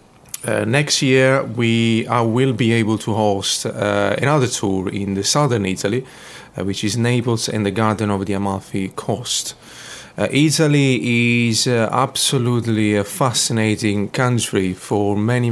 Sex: male